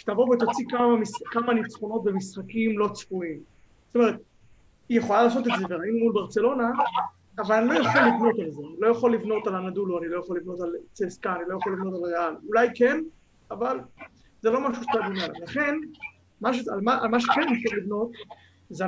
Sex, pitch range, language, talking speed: male, 200-245 Hz, Hebrew, 195 wpm